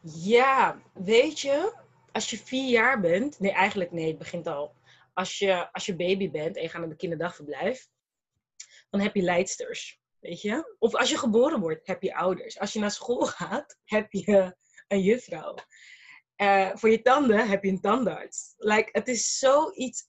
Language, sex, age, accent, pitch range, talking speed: Dutch, female, 20-39, Dutch, 185-235 Hz, 175 wpm